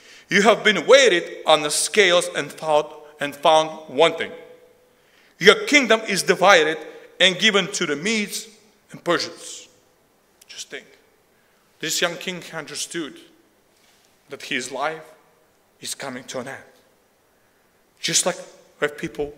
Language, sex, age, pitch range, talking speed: English, male, 40-59, 155-245 Hz, 120 wpm